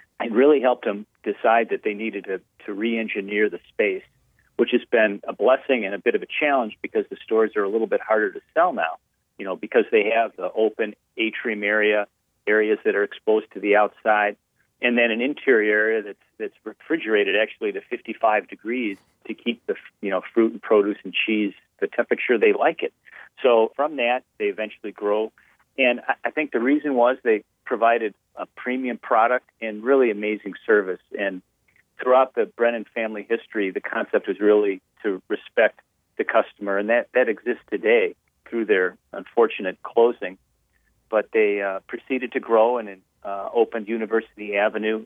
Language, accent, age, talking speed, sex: English, American, 40-59, 180 wpm, male